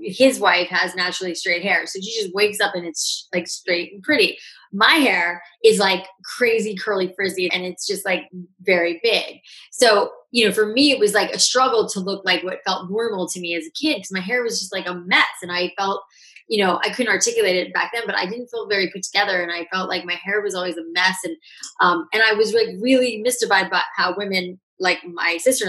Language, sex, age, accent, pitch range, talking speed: English, female, 20-39, American, 175-215 Hz, 235 wpm